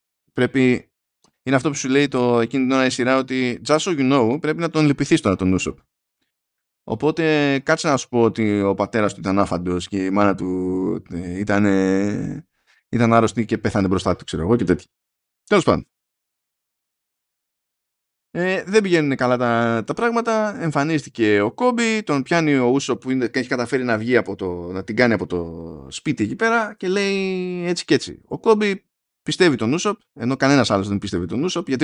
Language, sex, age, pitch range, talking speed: Greek, male, 20-39, 110-160 Hz, 185 wpm